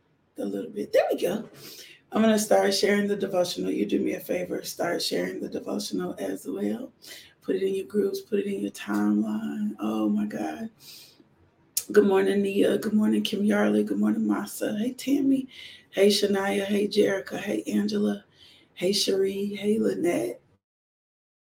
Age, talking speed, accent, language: 30-49, 160 wpm, American, English